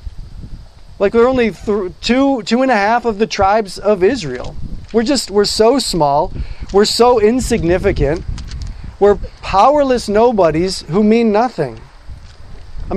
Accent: American